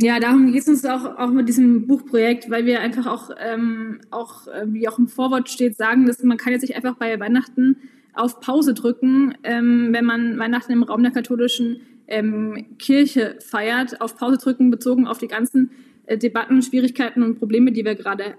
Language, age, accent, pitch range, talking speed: German, 20-39, German, 225-255 Hz, 195 wpm